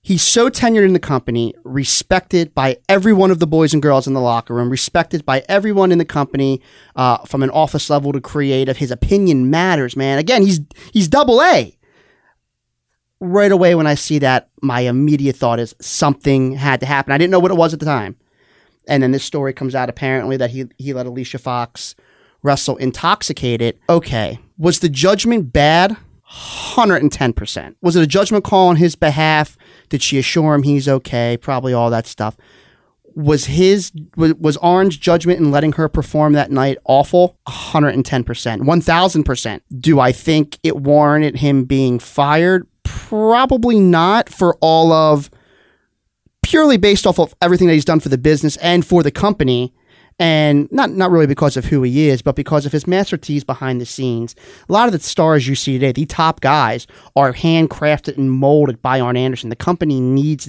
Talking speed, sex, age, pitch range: 185 wpm, male, 30-49, 130-170 Hz